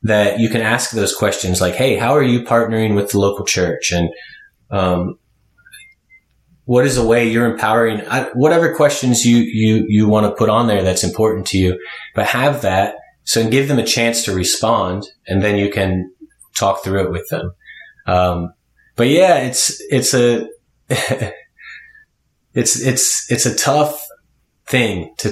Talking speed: 170 wpm